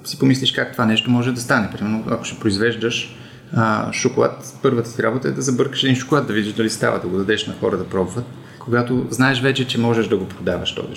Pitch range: 105-125 Hz